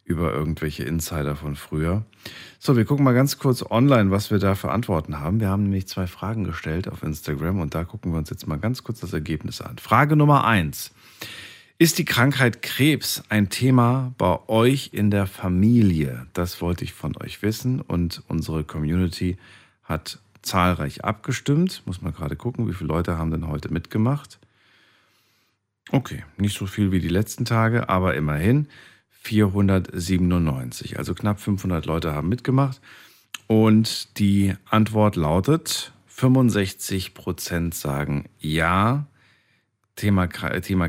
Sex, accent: male, German